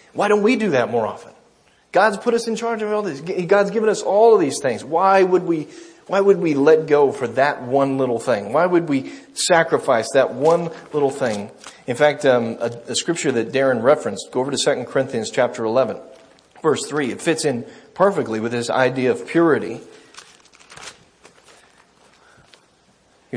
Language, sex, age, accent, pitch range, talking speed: English, male, 40-59, American, 125-170 Hz, 180 wpm